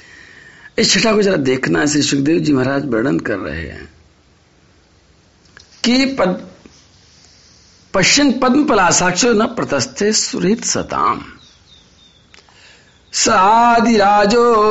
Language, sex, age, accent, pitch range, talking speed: Hindi, male, 50-69, native, 140-215 Hz, 100 wpm